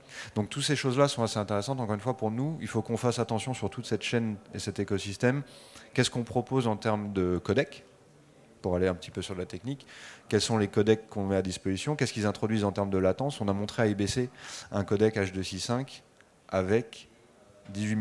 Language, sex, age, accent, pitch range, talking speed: French, male, 30-49, French, 100-115 Hz, 215 wpm